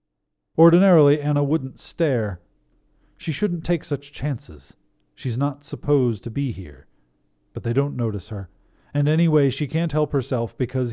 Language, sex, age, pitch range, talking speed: English, male, 40-59, 105-140 Hz, 150 wpm